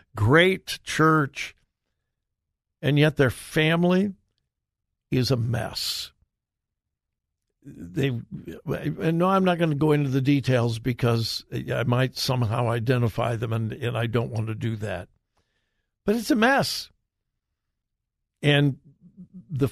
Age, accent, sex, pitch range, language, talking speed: 60-79, American, male, 120-170 Hz, English, 120 wpm